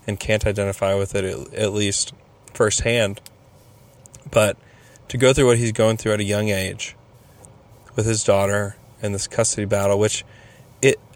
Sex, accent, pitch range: male, American, 105-130 Hz